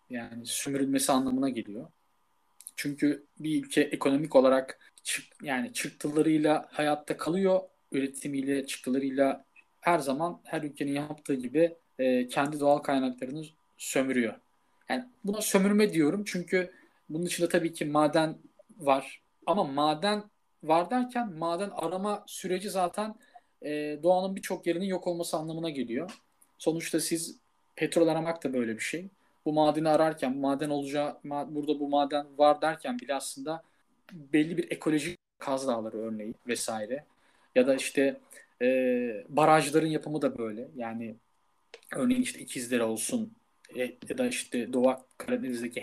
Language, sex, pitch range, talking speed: Turkish, male, 140-190 Hz, 125 wpm